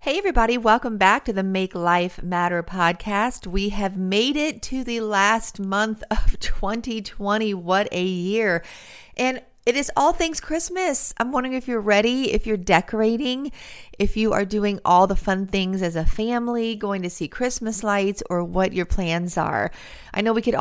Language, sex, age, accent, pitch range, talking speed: English, female, 40-59, American, 180-225 Hz, 180 wpm